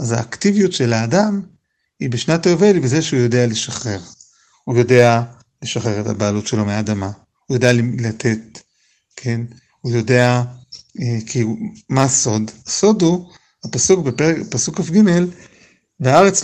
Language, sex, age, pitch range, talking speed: Hebrew, male, 50-69, 120-165 Hz, 135 wpm